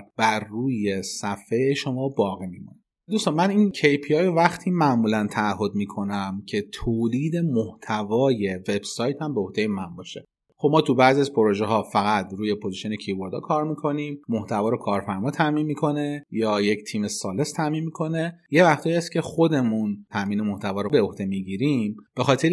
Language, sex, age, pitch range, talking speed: Persian, male, 30-49, 100-145 Hz, 160 wpm